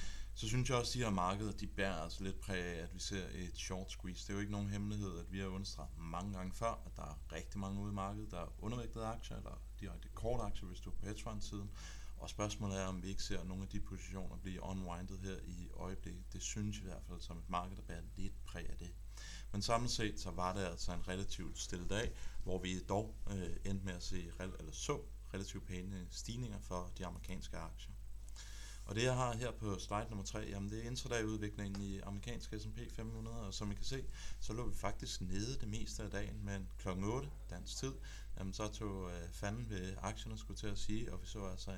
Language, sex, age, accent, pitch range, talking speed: Danish, male, 30-49, native, 95-105 Hz, 235 wpm